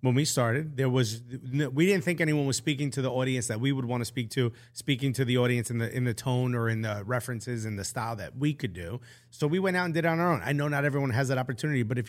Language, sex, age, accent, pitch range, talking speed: English, male, 30-49, American, 120-145 Hz, 300 wpm